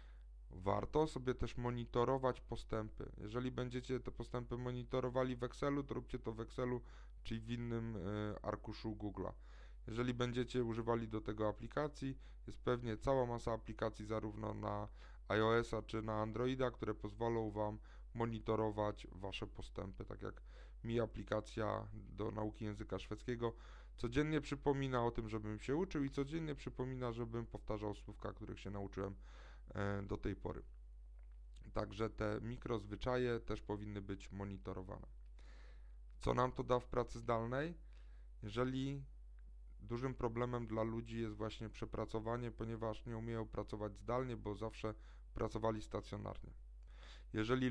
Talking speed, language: 130 wpm, Polish